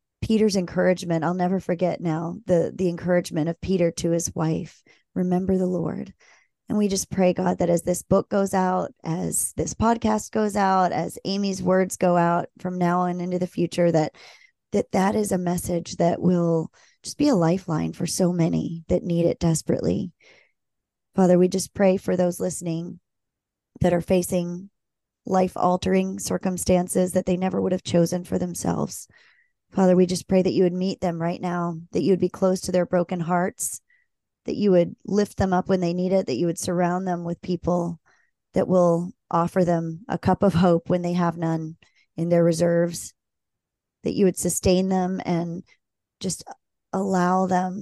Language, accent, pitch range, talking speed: English, American, 170-185 Hz, 180 wpm